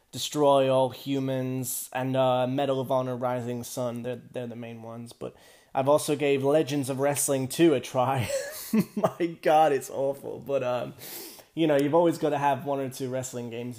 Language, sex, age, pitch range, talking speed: English, male, 20-39, 120-140 Hz, 185 wpm